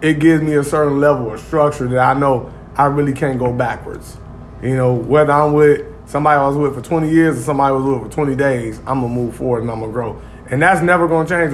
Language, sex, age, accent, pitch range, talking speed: English, male, 20-39, American, 130-155 Hz, 255 wpm